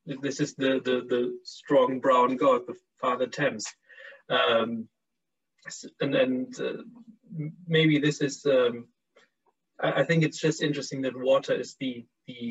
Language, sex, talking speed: English, male, 140 wpm